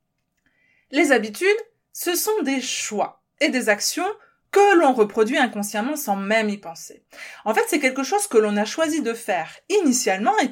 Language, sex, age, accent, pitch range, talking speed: French, female, 20-39, French, 200-290 Hz, 170 wpm